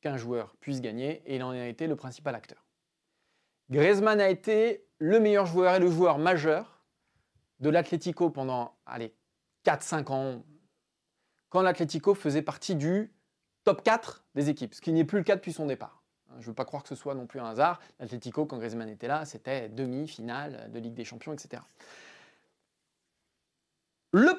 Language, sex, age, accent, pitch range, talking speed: French, male, 20-39, French, 140-205 Hz, 170 wpm